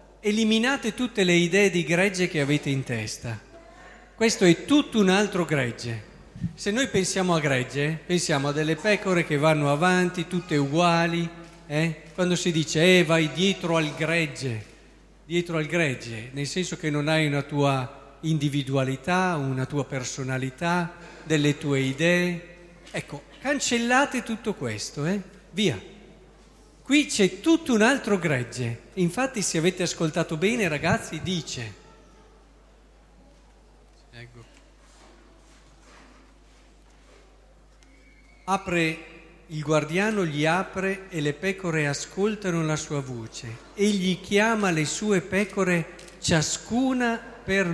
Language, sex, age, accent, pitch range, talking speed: Italian, male, 50-69, native, 145-185 Hz, 120 wpm